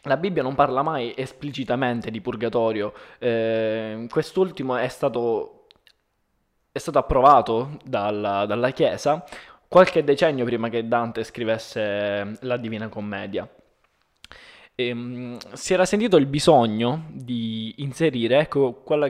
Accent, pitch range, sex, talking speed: native, 110-140 Hz, male, 115 wpm